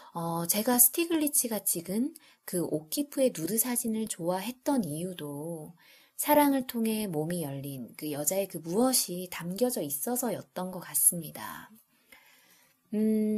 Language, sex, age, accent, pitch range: Korean, female, 20-39, native, 160-235 Hz